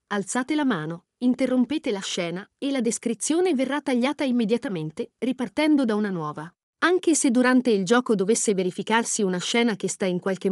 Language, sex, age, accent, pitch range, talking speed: Italian, female, 40-59, native, 195-275 Hz, 165 wpm